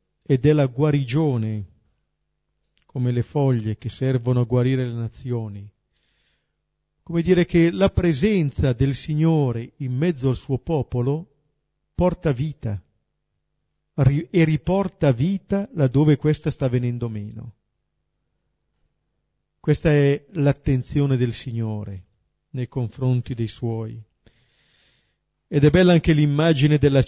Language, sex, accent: Italian, male, native